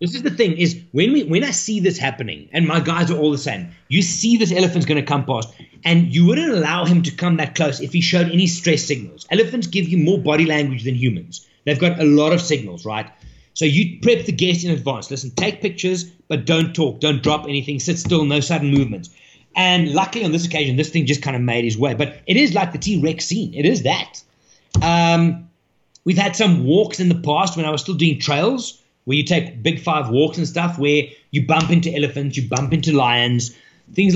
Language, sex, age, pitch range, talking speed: English, male, 30-49, 145-180 Hz, 235 wpm